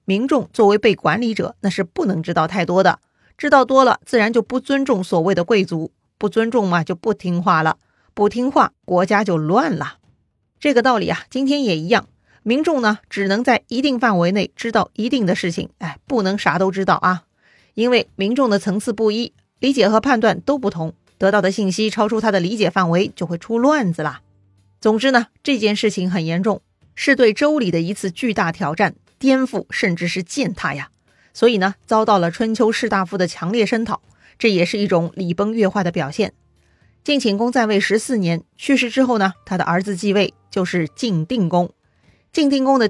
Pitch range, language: 180-235 Hz, Chinese